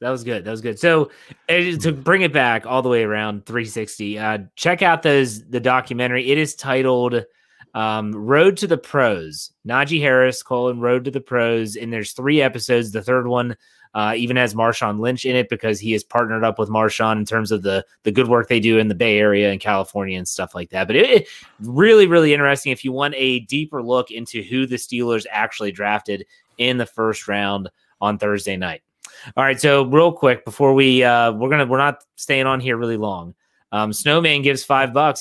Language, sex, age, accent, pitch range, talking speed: English, male, 30-49, American, 110-140 Hz, 210 wpm